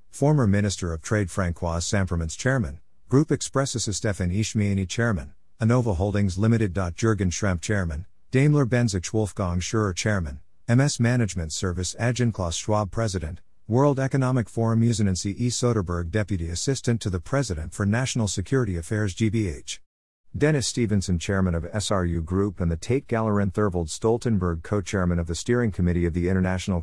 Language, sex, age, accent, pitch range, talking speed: English, male, 50-69, American, 90-115 Hz, 150 wpm